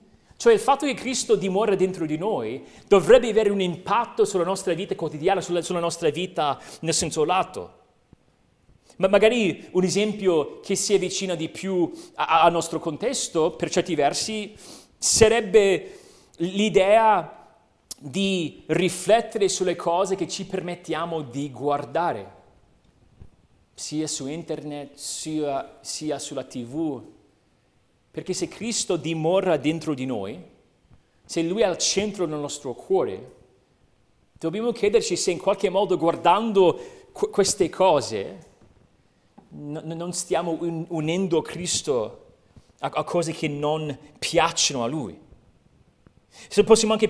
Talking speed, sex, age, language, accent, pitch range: 125 wpm, male, 40-59, Italian, native, 160-210 Hz